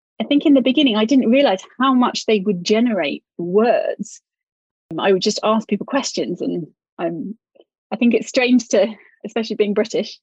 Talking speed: 175 wpm